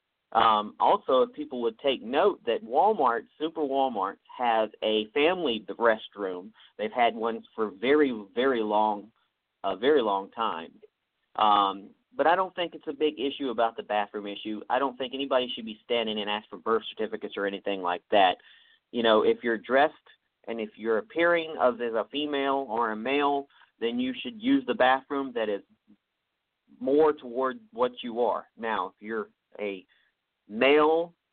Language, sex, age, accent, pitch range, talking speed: English, male, 40-59, American, 110-150 Hz, 170 wpm